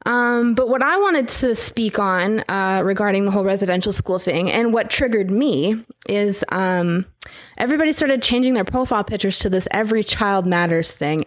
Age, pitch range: 20-39, 190-230 Hz